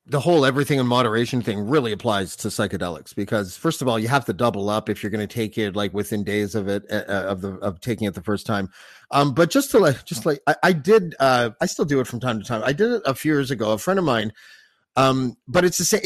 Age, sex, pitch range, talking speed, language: 30-49, male, 110-150 Hz, 280 wpm, English